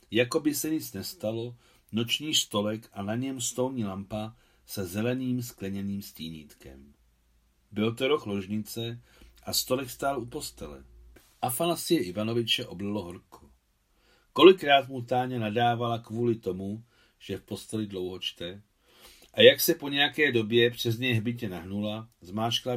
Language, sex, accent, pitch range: Czech, male, native, 95-125 Hz